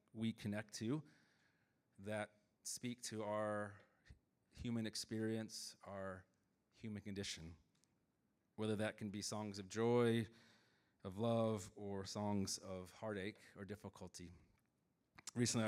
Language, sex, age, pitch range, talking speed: English, male, 30-49, 100-115 Hz, 105 wpm